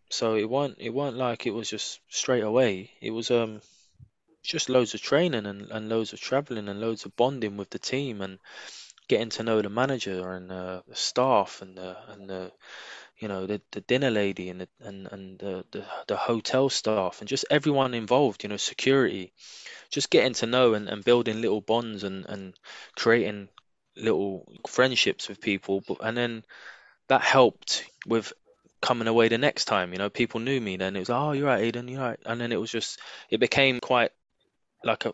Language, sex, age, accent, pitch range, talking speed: English, male, 20-39, British, 100-120 Hz, 200 wpm